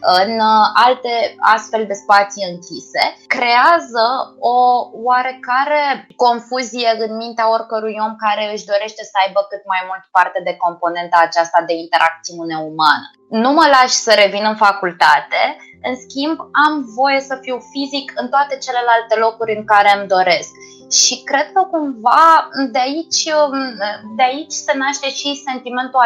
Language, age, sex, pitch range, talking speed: Romanian, 20-39, female, 210-265 Hz, 145 wpm